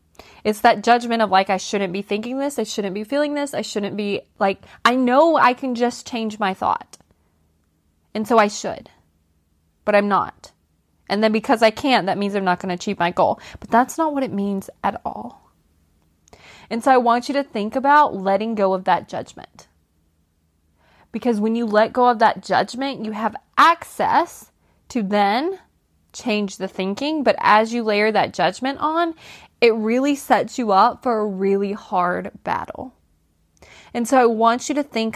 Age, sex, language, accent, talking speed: 20-39, female, English, American, 185 wpm